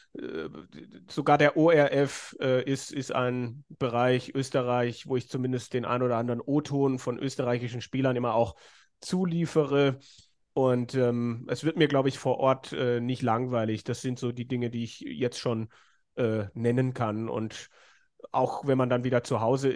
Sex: male